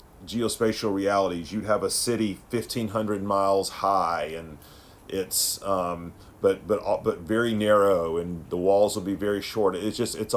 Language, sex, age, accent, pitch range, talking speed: English, male, 40-59, American, 90-110 Hz, 150 wpm